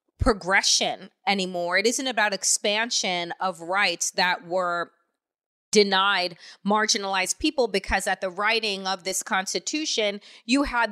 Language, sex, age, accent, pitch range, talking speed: English, female, 30-49, American, 200-245 Hz, 120 wpm